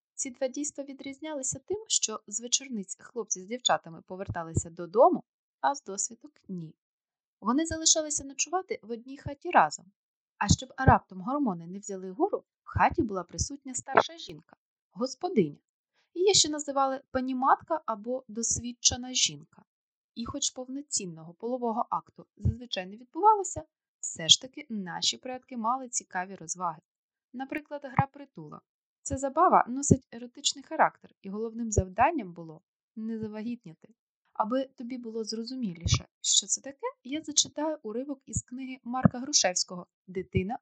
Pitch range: 200-275 Hz